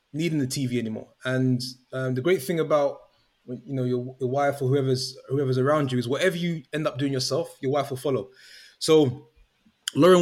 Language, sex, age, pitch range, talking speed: English, male, 20-39, 130-170 Hz, 195 wpm